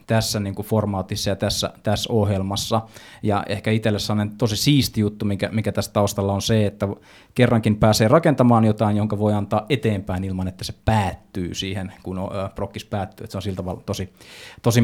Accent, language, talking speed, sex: native, Finnish, 185 wpm, male